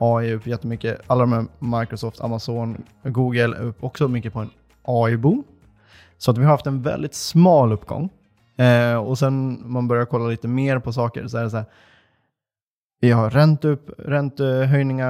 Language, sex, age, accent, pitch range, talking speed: Swedish, male, 20-39, native, 115-135 Hz, 170 wpm